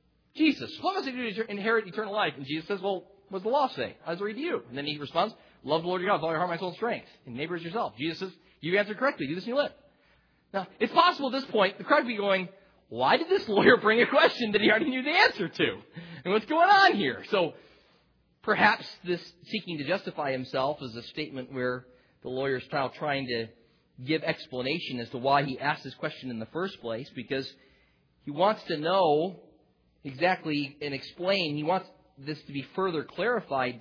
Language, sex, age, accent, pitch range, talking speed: English, male, 40-59, American, 140-205 Hz, 225 wpm